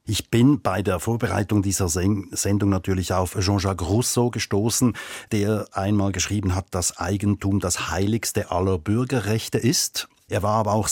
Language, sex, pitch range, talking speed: German, male, 95-110 Hz, 150 wpm